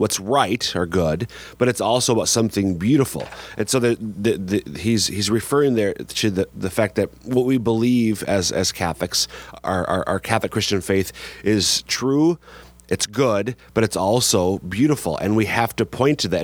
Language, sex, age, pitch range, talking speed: English, male, 30-49, 95-120 Hz, 185 wpm